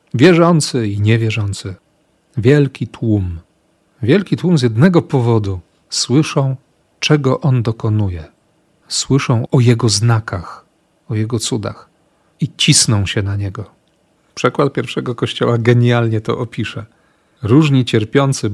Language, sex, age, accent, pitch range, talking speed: Polish, male, 40-59, native, 110-135 Hz, 110 wpm